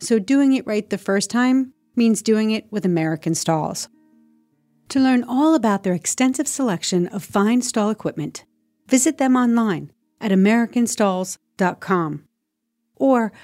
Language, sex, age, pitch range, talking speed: English, female, 40-59, 180-255 Hz, 135 wpm